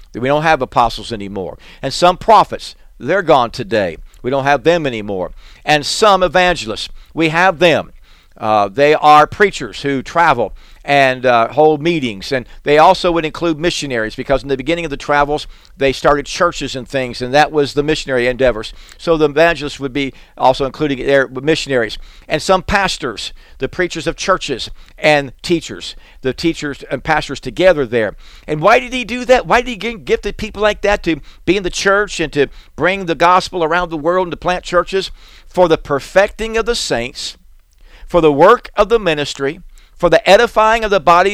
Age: 50-69